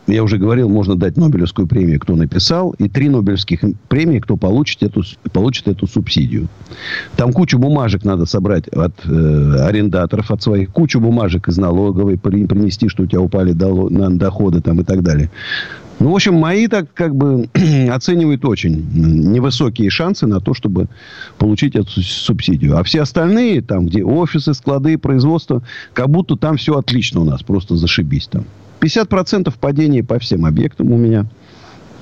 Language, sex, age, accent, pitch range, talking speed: Russian, male, 50-69, native, 100-155 Hz, 165 wpm